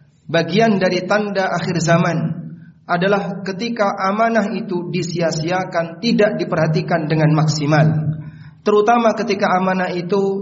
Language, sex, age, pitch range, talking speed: Indonesian, male, 40-59, 155-205 Hz, 105 wpm